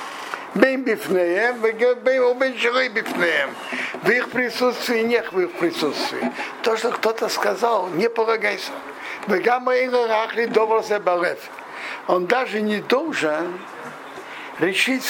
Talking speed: 75 wpm